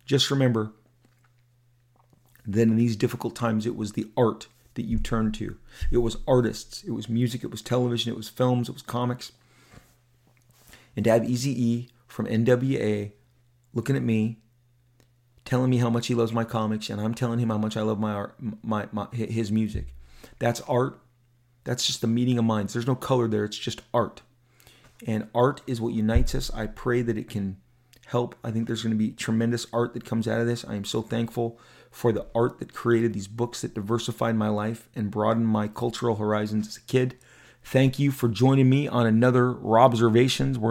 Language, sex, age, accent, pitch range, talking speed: English, male, 30-49, American, 115-125 Hz, 200 wpm